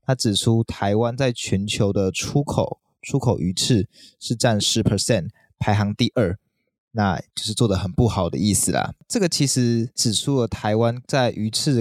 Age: 20-39